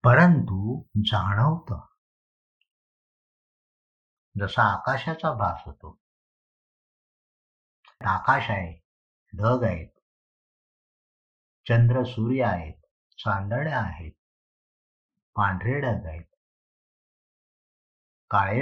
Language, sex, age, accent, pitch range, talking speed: Marathi, male, 50-69, native, 100-140 Hz, 40 wpm